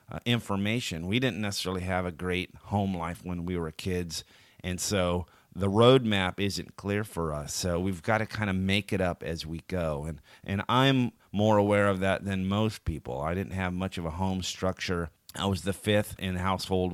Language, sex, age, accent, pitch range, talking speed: English, male, 30-49, American, 85-105 Hz, 205 wpm